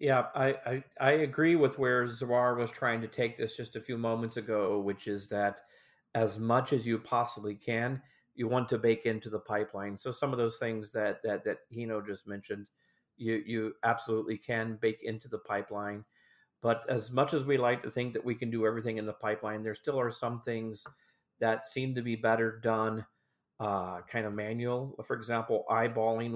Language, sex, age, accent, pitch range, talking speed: English, male, 40-59, American, 110-125 Hz, 200 wpm